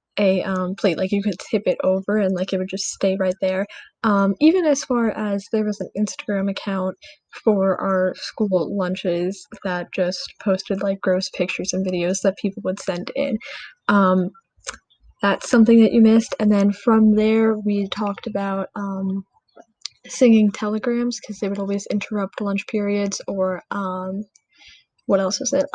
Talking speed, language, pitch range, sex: 170 wpm, English, 190-225 Hz, female